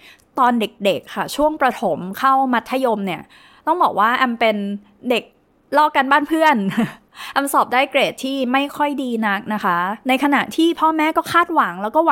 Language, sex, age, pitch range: Thai, female, 20-39, 205-275 Hz